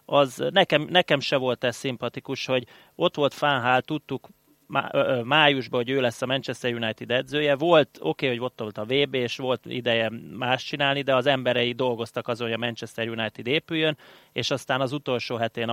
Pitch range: 120-140 Hz